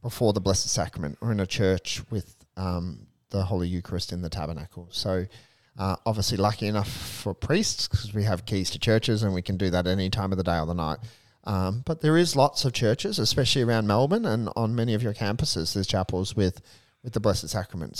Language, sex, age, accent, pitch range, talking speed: English, male, 30-49, Australian, 100-125 Hz, 220 wpm